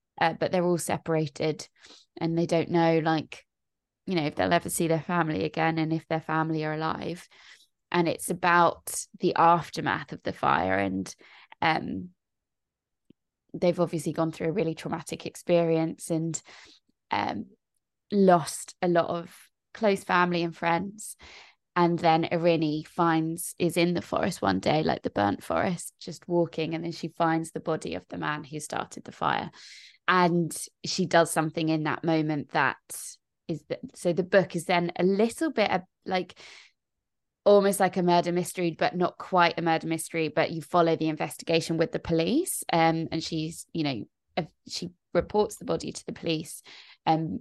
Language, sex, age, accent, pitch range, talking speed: English, female, 20-39, British, 160-175 Hz, 165 wpm